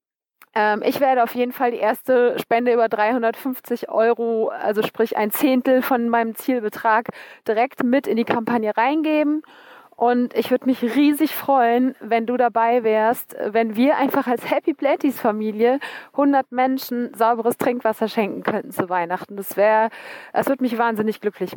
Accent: German